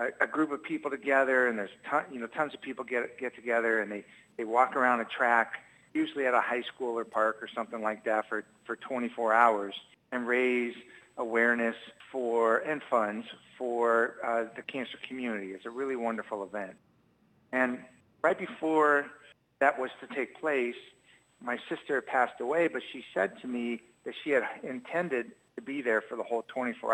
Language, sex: English, male